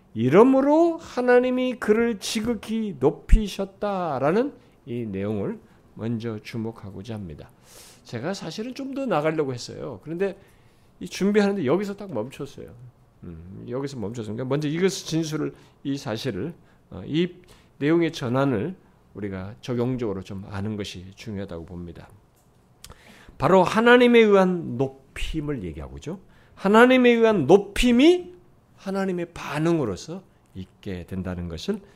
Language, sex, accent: Korean, male, native